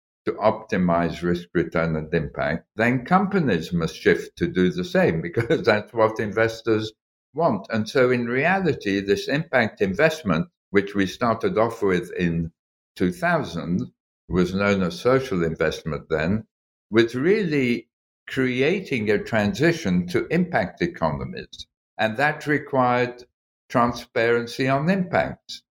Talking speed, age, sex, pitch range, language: 125 wpm, 60-79, male, 95-125 Hz, English